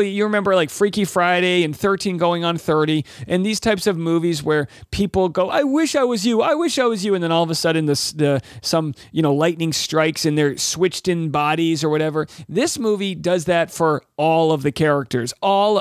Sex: male